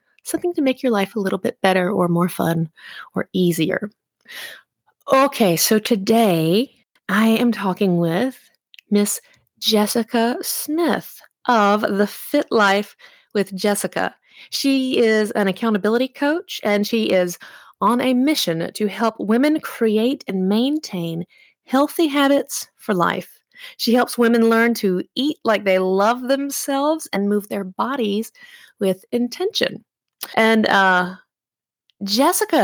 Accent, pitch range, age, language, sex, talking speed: American, 190-245 Hz, 30-49, English, female, 130 wpm